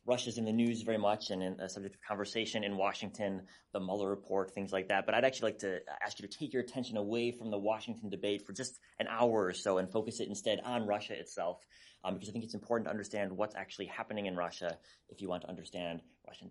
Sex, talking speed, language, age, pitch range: male, 245 wpm, English, 30-49, 90-110 Hz